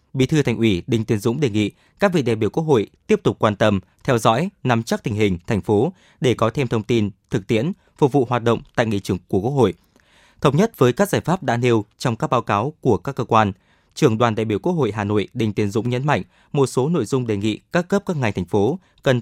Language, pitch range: Vietnamese, 105-145 Hz